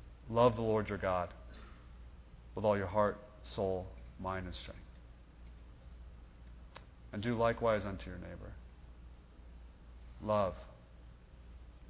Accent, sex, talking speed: American, male, 100 wpm